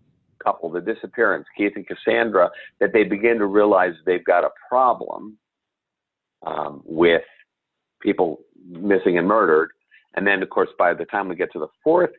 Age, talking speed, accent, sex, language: 50-69, 160 wpm, American, male, English